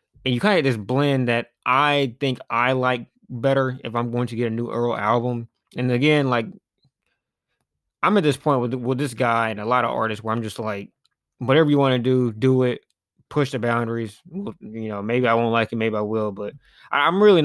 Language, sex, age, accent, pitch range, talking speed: English, male, 20-39, American, 110-130 Hz, 225 wpm